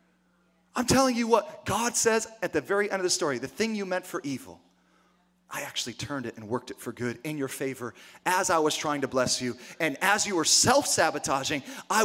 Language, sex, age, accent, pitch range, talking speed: English, male, 30-49, American, 130-215 Hz, 220 wpm